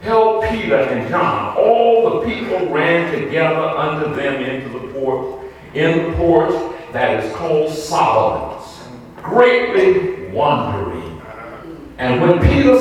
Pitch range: 160-265 Hz